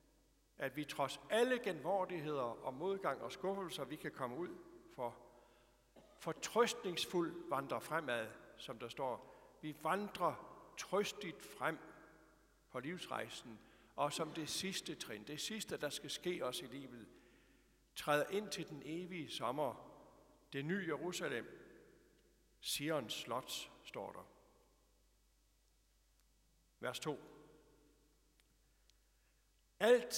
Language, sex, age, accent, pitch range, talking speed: Danish, male, 60-79, native, 145-195 Hz, 110 wpm